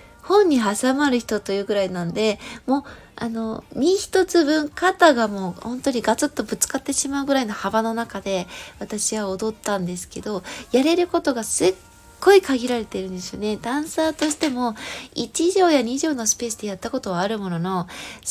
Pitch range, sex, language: 215-300 Hz, female, Japanese